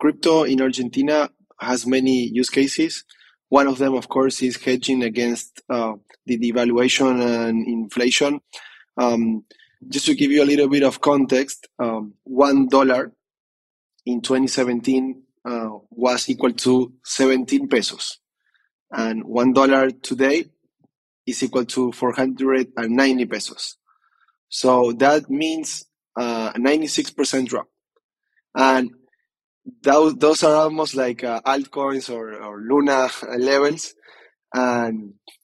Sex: male